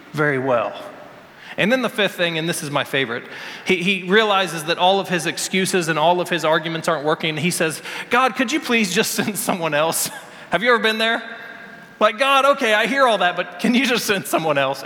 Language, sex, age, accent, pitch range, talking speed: English, male, 30-49, American, 185-255 Hz, 225 wpm